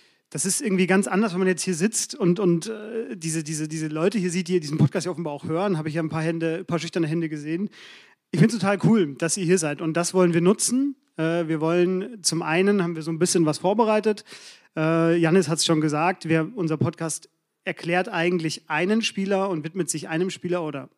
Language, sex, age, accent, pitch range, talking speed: German, male, 30-49, German, 160-190 Hz, 225 wpm